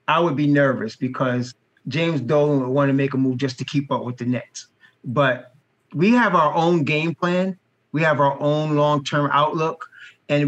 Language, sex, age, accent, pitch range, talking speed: English, male, 30-49, American, 140-190 Hz, 200 wpm